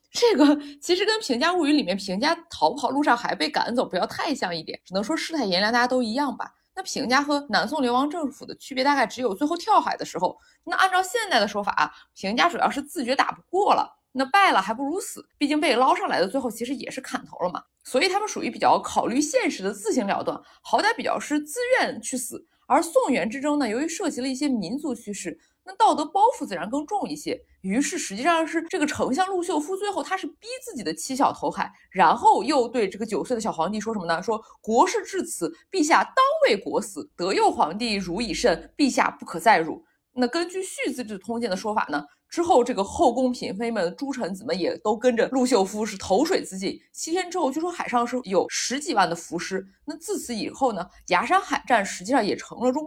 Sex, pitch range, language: female, 235-335 Hz, Chinese